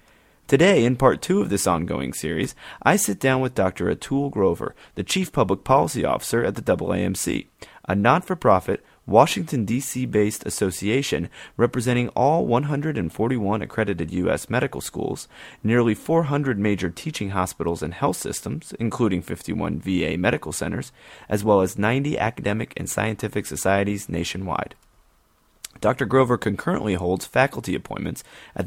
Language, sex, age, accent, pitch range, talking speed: English, male, 30-49, American, 95-130 Hz, 135 wpm